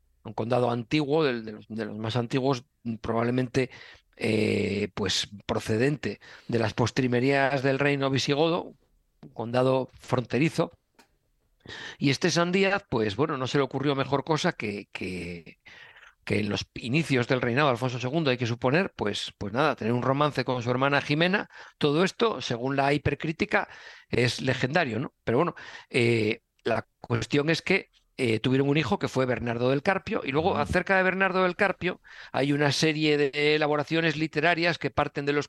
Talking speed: 165 wpm